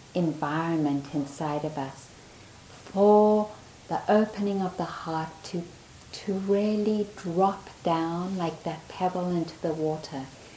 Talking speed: 120 wpm